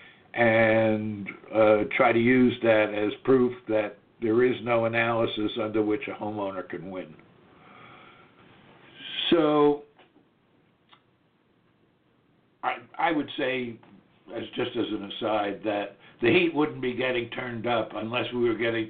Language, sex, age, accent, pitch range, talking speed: English, male, 60-79, American, 110-135 Hz, 130 wpm